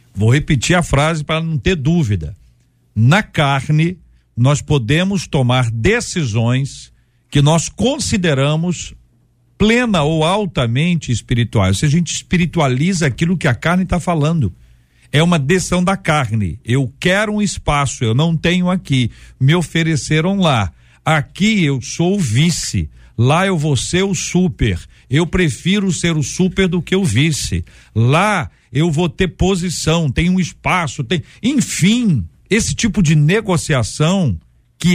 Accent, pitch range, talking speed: Brazilian, 120-175 Hz, 140 wpm